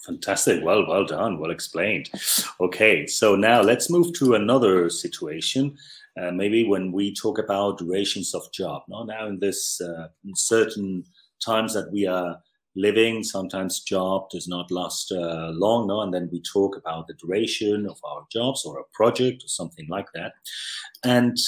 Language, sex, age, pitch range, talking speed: English, male, 40-59, 95-130 Hz, 160 wpm